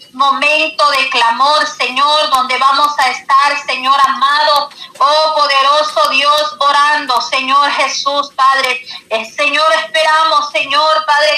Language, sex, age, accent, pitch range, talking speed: Spanish, female, 40-59, American, 265-300 Hz, 115 wpm